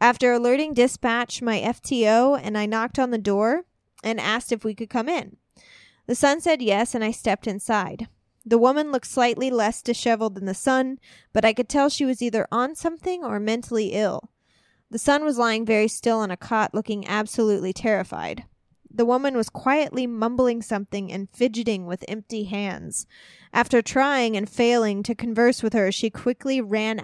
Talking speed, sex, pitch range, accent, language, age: 180 wpm, female, 210-250 Hz, American, English, 20-39